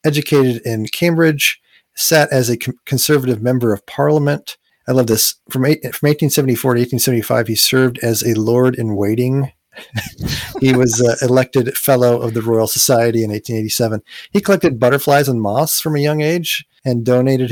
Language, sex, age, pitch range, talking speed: English, male, 40-59, 120-145 Hz, 155 wpm